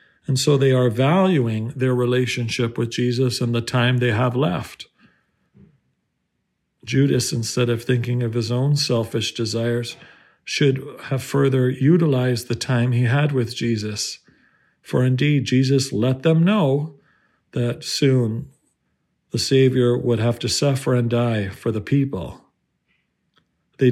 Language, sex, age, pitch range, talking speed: English, male, 50-69, 115-135 Hz, 135 wpm